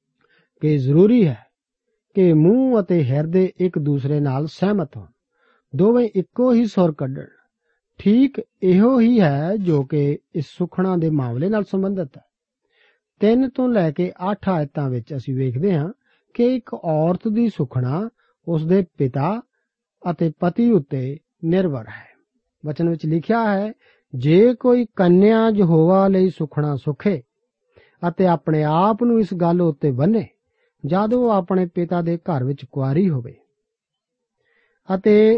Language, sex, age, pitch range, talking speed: Punjabi, male, 50-69, 155-210 Hz, 105 wpm